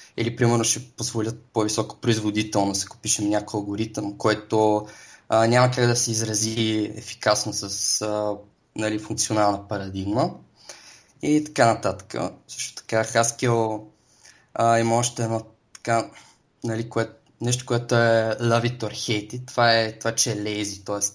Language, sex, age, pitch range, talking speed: Bulgarian, male, 20-39, 105-120 Hz, 135 wpm